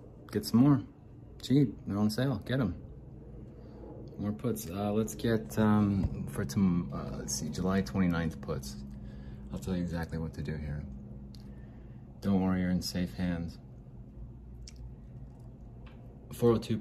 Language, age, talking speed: English, 30-49, 130 wpm